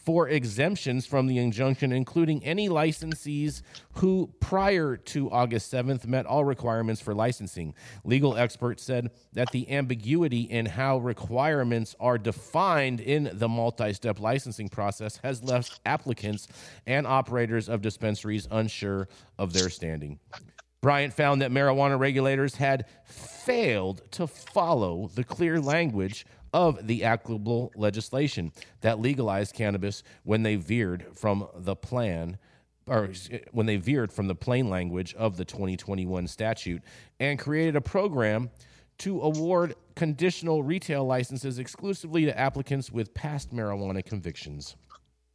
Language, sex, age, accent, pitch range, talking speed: English, male, 40-59, American, 105-140 Hz, 130 wpm